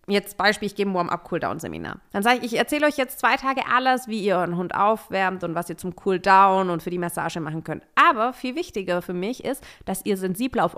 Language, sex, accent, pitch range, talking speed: German, female, German, 190-255 Hz, 250 wpm